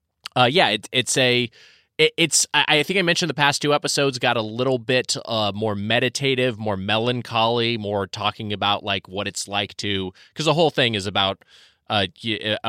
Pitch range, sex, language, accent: 95-120 Hz, male, English, American